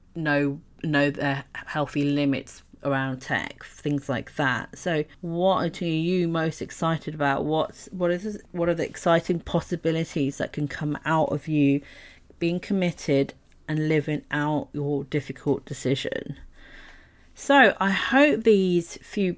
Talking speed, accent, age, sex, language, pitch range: 135 wpm, British, 40-59, female, English, 145-180 Hz